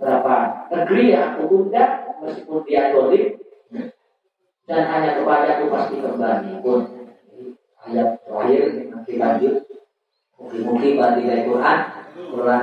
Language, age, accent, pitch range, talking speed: Indonesian, 40-59, native, 160-225 Hz, 110 wpm